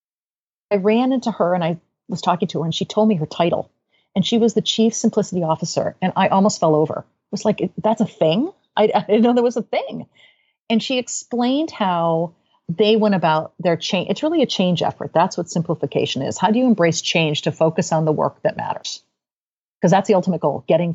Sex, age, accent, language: female, 40-59, American, English